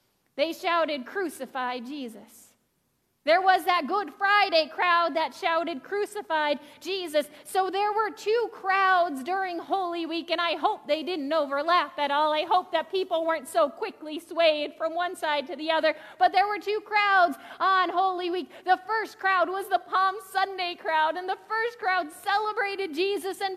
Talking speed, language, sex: 170 wpm, English, female